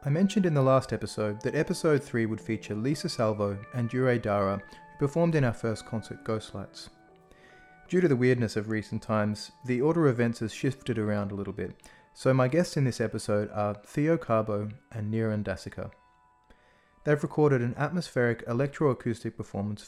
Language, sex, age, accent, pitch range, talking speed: English, male, 30-49, Australian, 105-140 Hz, 175 wpm